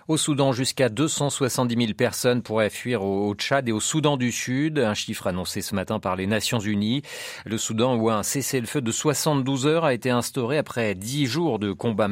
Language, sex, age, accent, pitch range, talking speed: French, male, 40-59, French, 105-135 Hz, 200 wpm